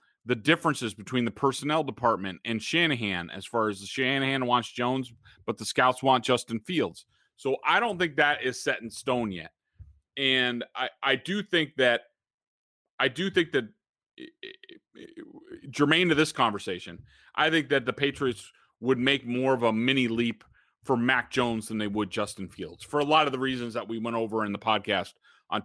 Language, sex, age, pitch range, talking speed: English, male, 30-49, 110-150 Hz, 190 wpm